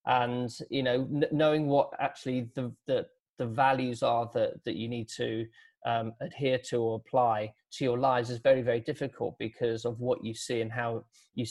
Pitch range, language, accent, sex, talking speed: 120-140 Hz, English, British, male, 195 wpm